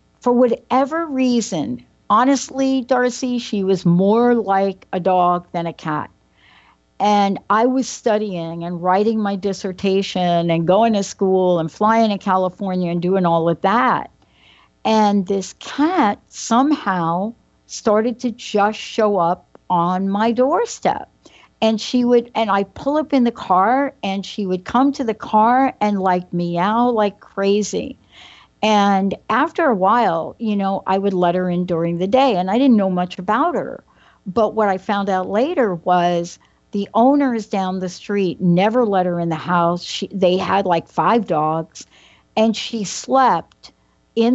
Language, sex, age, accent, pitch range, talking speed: English, female, 60-79, American, 185-240 Hz, 160 wpm